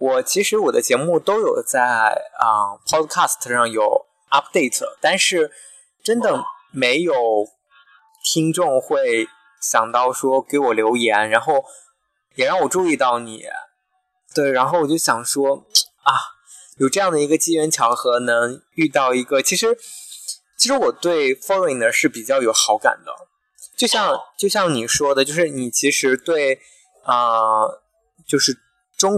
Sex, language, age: male, Chinese, 20-39